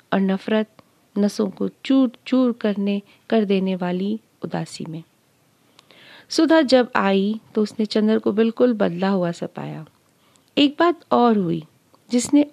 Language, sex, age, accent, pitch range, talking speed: Hindi, female, 40-59, native, 185-235 Hz, 135 wpm